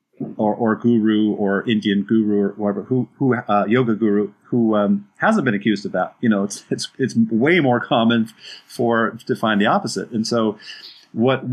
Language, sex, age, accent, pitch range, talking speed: English, male, 40-59, American, 105-120 Hz, 195 wpm